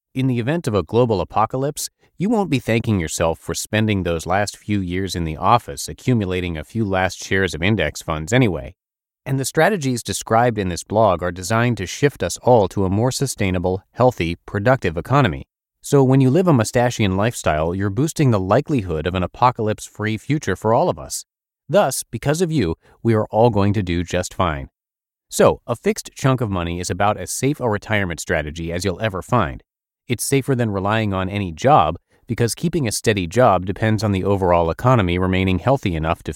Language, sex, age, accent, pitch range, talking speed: English, male, 30-49, American, 90-125 Hz, 195 wpm